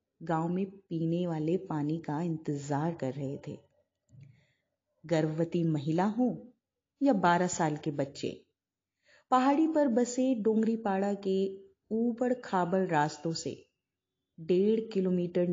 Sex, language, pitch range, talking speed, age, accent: female, Hindi, 155-240 Hz, 110 wpm, 30-49, native